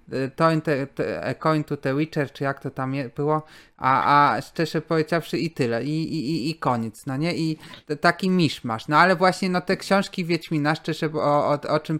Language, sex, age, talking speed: Polish, male, 30-49, 215 wpm